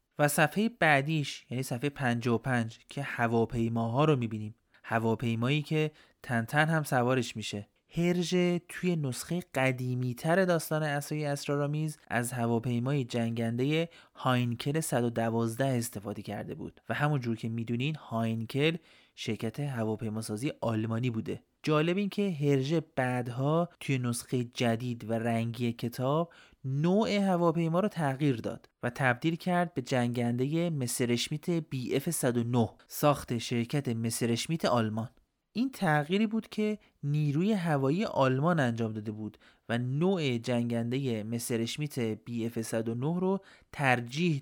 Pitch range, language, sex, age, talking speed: 115-155 Hz, Persian, male, 30-49, 120 wpm